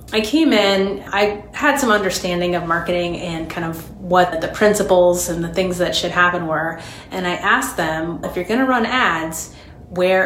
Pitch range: 175-210 Hz